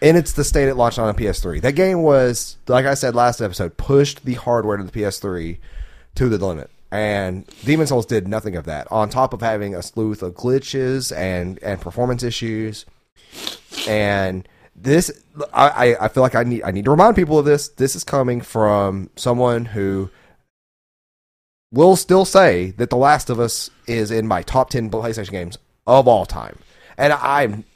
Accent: American